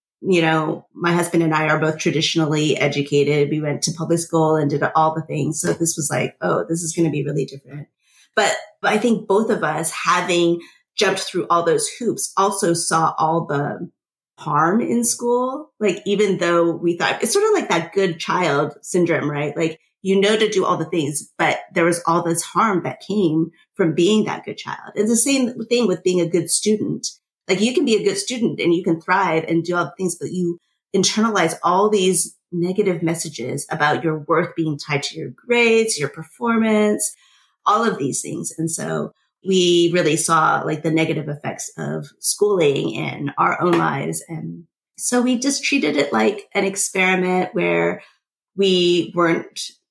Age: 30-49